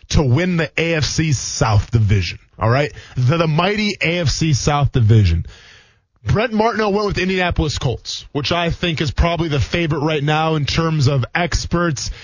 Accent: American